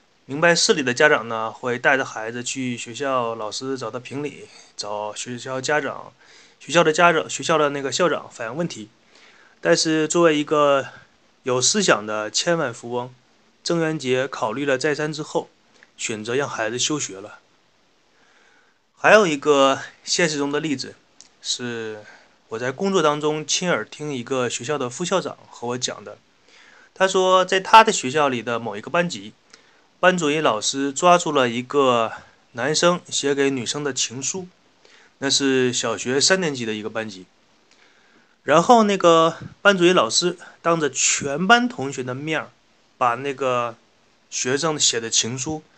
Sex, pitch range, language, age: male, 125-170 Hz, Chinese, 20-39